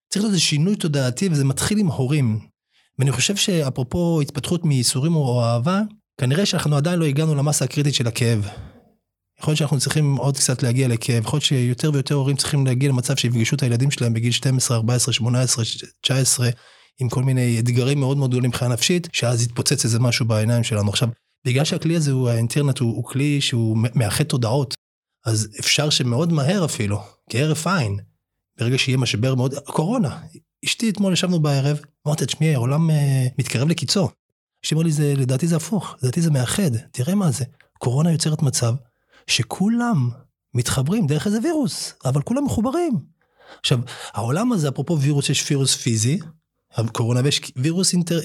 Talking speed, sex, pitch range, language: 155 wpm, male, 125-160 Hz, Hebrew